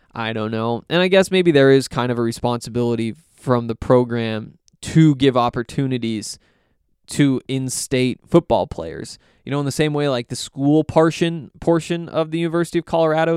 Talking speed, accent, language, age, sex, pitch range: 175 wpm, American, English, 20-39, male, 120-155 Hz